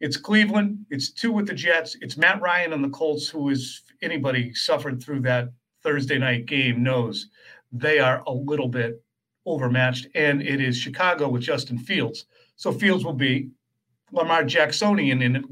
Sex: male